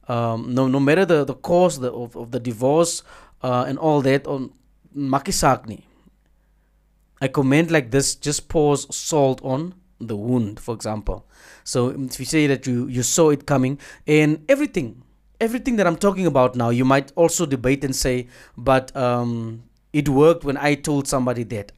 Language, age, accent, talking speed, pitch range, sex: English, 30-49, South African, 175 wpm, 120-150 Hz, male